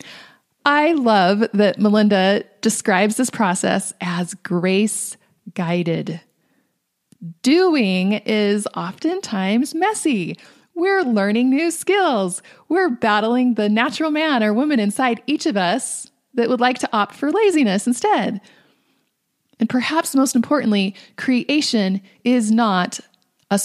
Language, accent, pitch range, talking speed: English, American, 195-250 Hz, 110 wpm